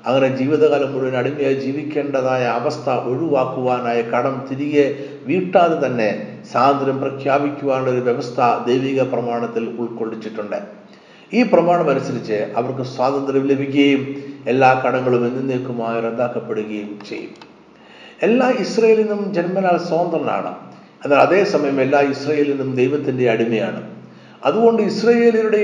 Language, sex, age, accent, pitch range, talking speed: Malayalam, male, 50-69, native, 120-155 Hz, 90 wpm